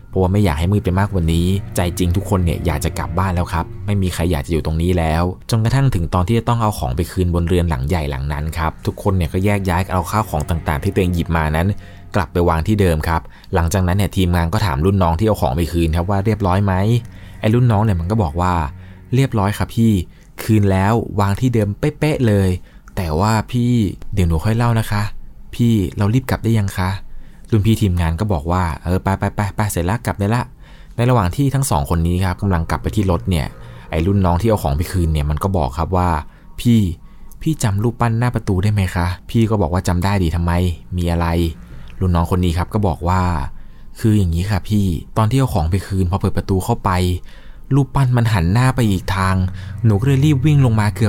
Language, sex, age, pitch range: Thai, male, 20-39, 85-110 Hz